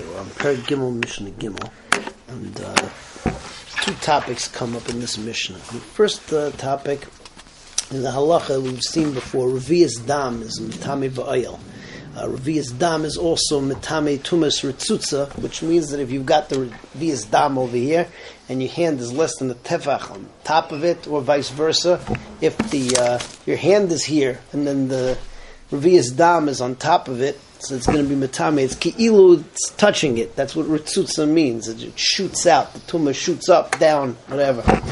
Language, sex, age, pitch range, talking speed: English, male, 40-59, 130-170 Hz, 180 wpm